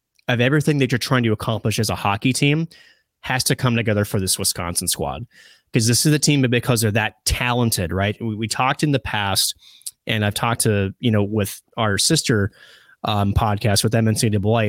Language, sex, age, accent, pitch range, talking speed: English, male, 30-49, American, 105-130 Hz, 195 wpm